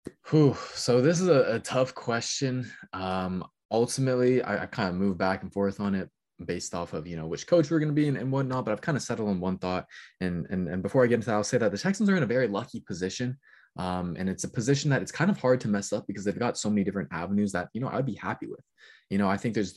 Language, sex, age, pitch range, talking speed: English, male, 20-39, 100-130 Hz, 280 wpm